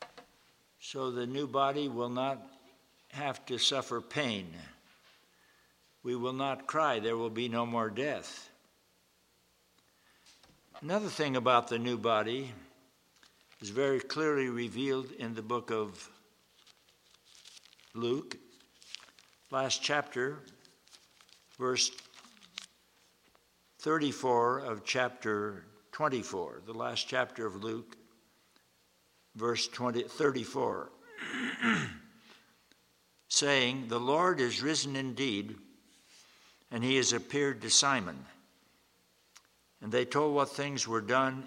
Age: 60-79